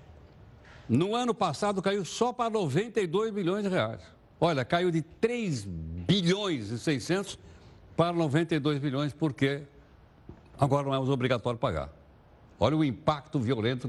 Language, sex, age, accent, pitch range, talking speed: Portuguese, male, 60-79, Brazilian, 120-175 Hz, 135 wpm